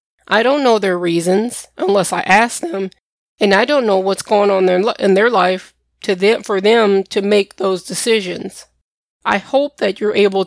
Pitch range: 190-220 Hz